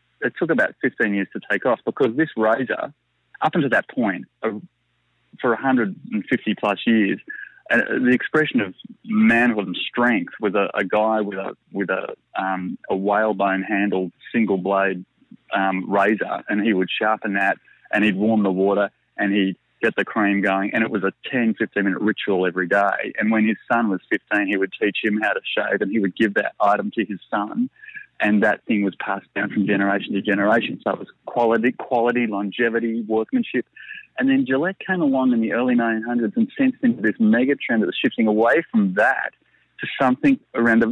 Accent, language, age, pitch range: Australian, English, 20-39, 100-155 Hz